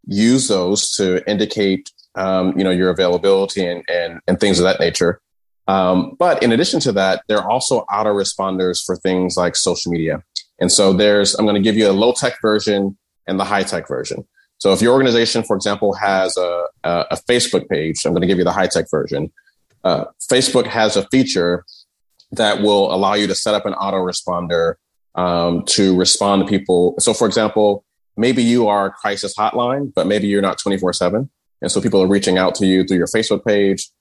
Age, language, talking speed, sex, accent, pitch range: 30-49, English, 200 wpm, male, American, 90-105 Hz